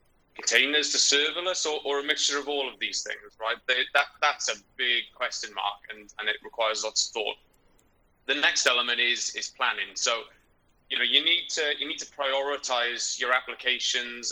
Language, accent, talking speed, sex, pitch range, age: English, British, 190 wpm, male, 115-140 Hz, 20-39